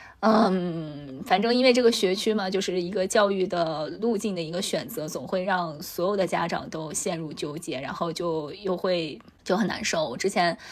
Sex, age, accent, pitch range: female, 20-39, native, 170-215 Hz